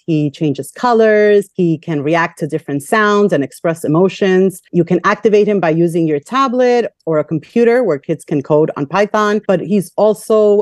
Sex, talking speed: female, 180 wpm